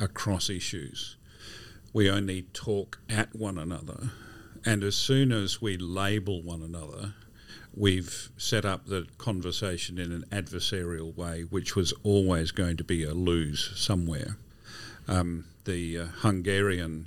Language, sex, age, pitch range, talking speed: English, male, 50-69, 90-105 Hz, 135 wpm